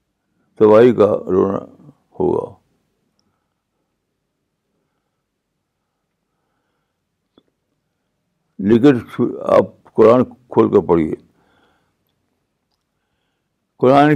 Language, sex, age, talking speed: Urdu, male, 60-79, 45 wpm